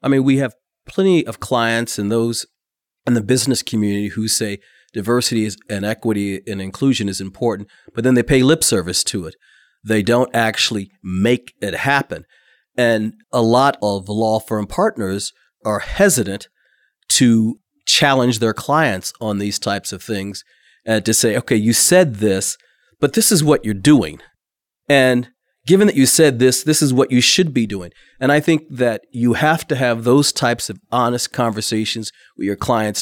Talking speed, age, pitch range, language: 175 wpm, 40-59, 110-135 Hz, English